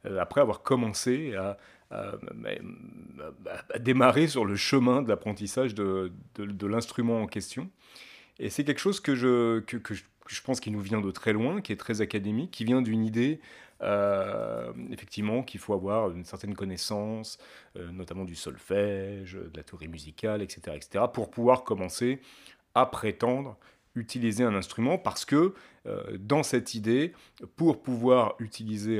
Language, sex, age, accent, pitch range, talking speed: French, male, 30-49, French, 95-125 Hz, 165 wpm